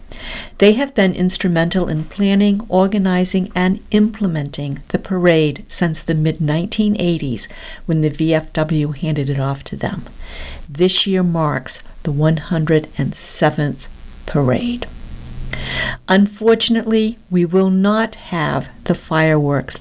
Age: 50-69